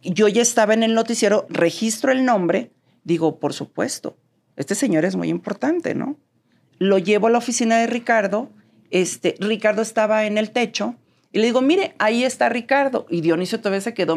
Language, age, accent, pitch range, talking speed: English, 40-59, Mexican, 195-255 Hz, 180 wpm